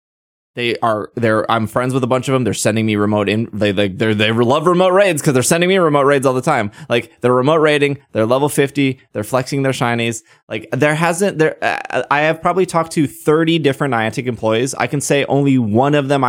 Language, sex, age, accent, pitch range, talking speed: English, male, 20-39, American, 110-150 Hz, 230 wpm